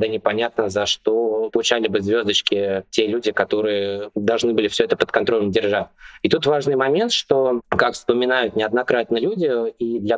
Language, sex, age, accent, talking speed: Russian, male, 20-39, native, 165 wpm